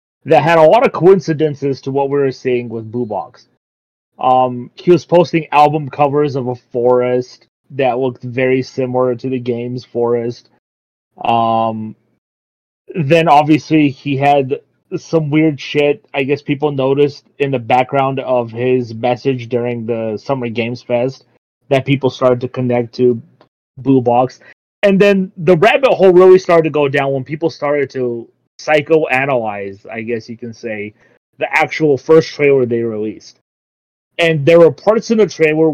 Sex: male